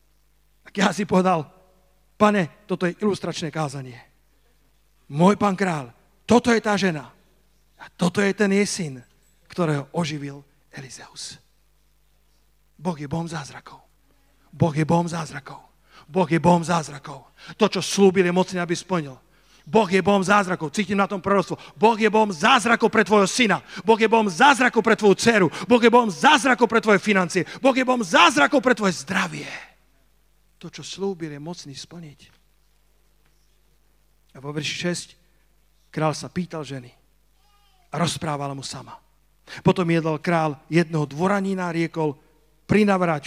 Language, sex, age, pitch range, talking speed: Slovak, male, 40-59, 155-205 Hz, 145 wpm